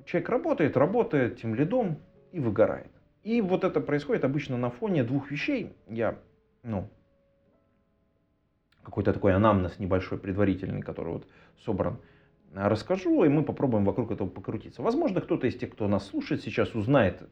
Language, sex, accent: Russian, male, native